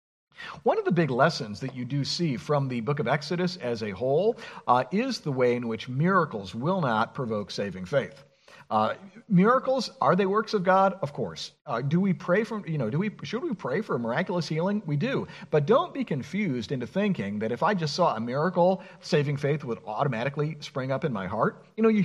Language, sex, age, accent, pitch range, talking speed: English, male, 50-69, American, 135-185 Hz, 220 wpm